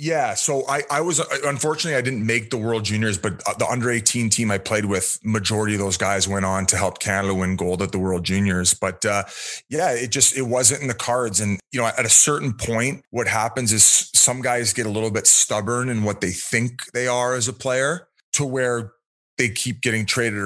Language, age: English, 30-49